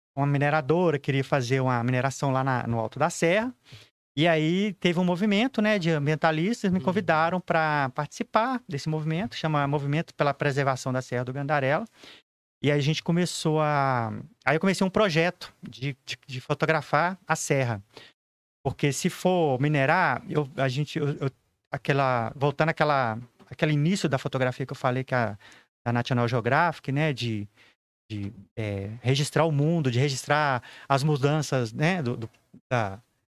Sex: male